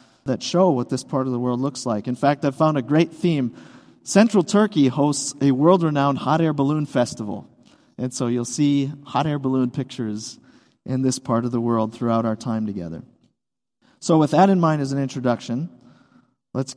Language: English